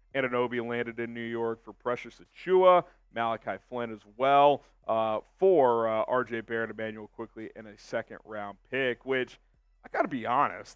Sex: male